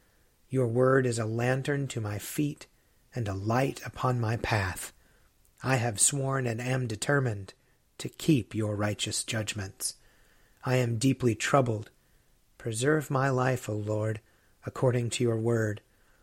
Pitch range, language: 110-130 Hz, English